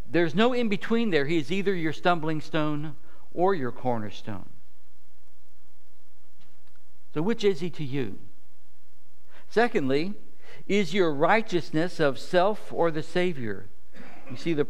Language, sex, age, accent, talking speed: English, male, 60-79, American, 130 wpm